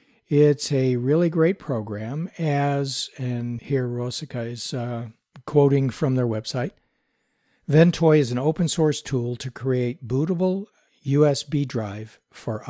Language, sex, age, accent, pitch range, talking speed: English, male, 60-79, American, 120-145 Hz, 130 wpm